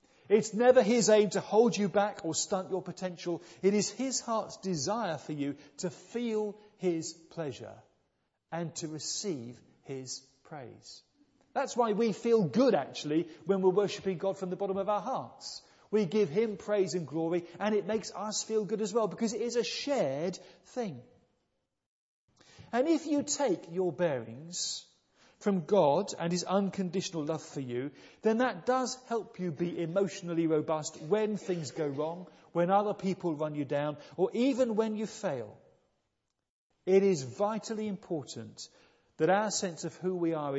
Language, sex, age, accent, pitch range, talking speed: English, male, 40-59, British, 150-205 Hz, 165 wpm